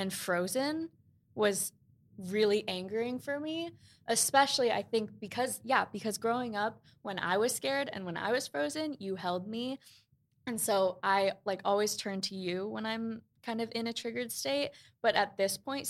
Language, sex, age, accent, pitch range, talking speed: English, female, 20-39, American, 190-240 Hz, 175 wpm